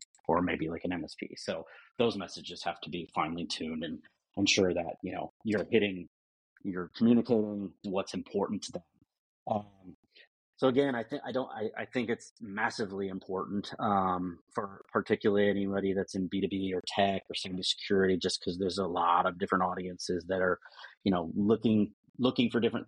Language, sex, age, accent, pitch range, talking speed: English, male, 30-49, American, 90-110 Hz, 175 wpm